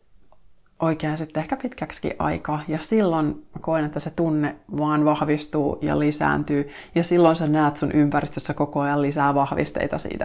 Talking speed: 150 wpm